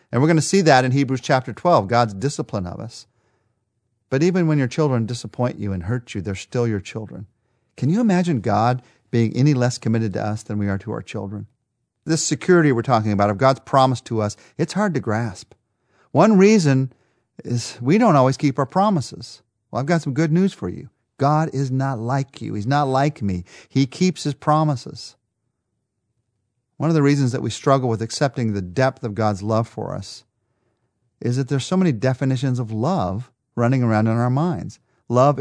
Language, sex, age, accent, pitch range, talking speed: English, male, 40-59, American, 115-150 Hz, 200 wpm